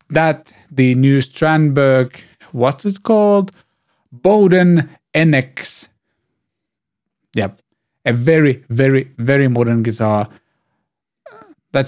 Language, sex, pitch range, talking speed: English, male, 120-155 Hz, 85 wpm